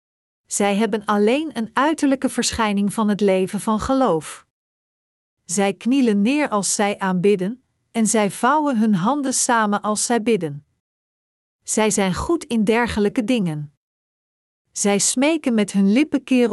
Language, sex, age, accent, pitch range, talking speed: Dutch, female, 50-69, Dutch, 195-245 Hz, 140 wpm